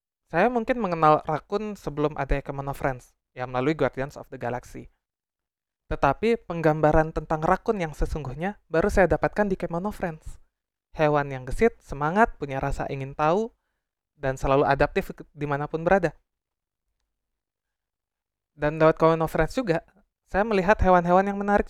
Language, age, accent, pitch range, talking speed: Indonesian, 20-39, native, 135-175 Hz, 140 wpm